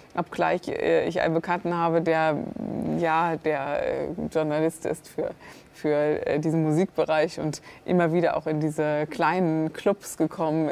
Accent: German